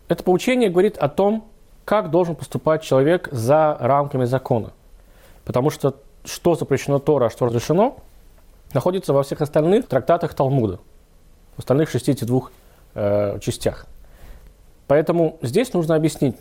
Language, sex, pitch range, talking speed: Russian, male, 115-165 Hz, 125 wpm